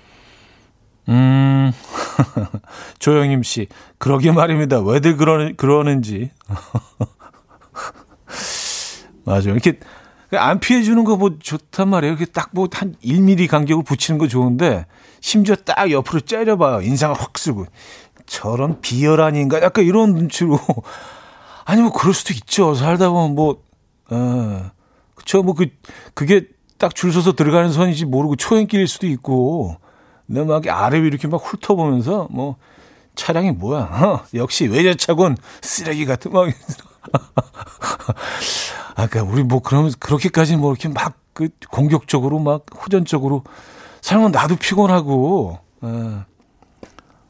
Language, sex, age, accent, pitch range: Korean, male, 40-59, native, 125-170 Hz